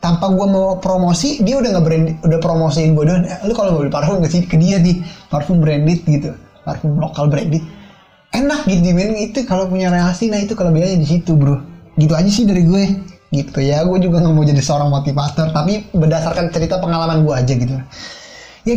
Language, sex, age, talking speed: Indonesian, male, 20-39, 200 wpm